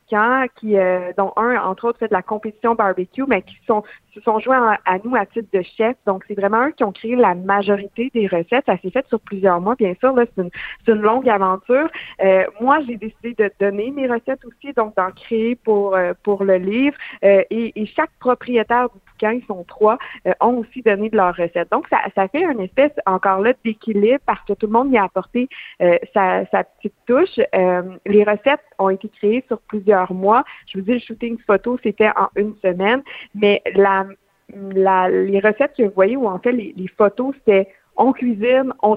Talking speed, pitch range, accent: 215 wpm, 200-245 Hz, Canadian